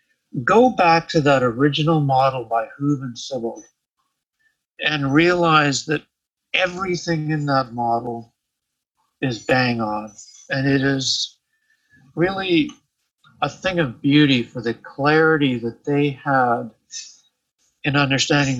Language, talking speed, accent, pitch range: English, 115 wpm, American, 120-155 Hz